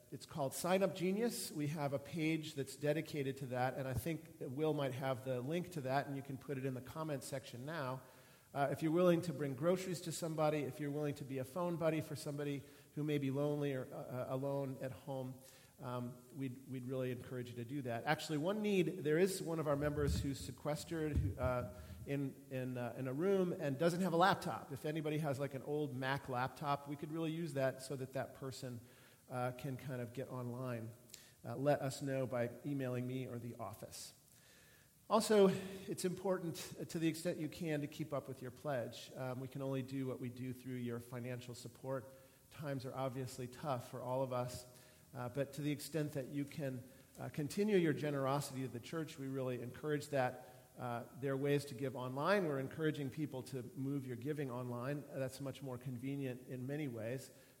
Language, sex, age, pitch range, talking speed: English, male, 40-59, 130-150 Hz, 210 wpm